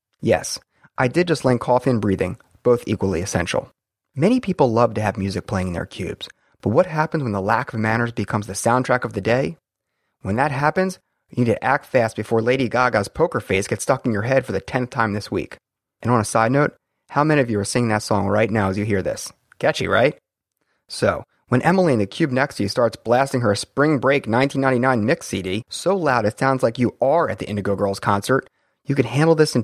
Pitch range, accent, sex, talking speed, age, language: 105-140 Hz, American, male, 230 wpm, 30-49, English